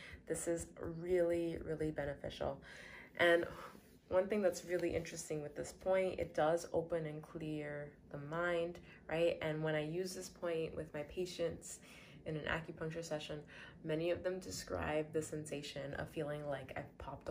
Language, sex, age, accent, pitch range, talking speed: English, female, 20-39, American, 145-170 Hz, 160 wpm